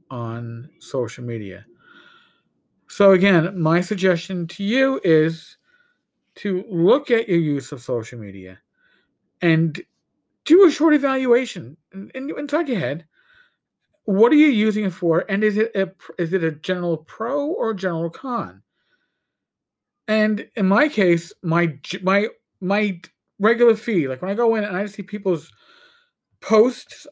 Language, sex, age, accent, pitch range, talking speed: English, male, 40-59, American, 160-225 Hz, 140 wpm